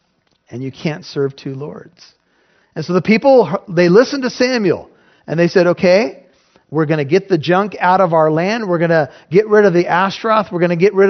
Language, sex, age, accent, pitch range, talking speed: English, male, 40-59, American, 150-200 Hz, 220 wpm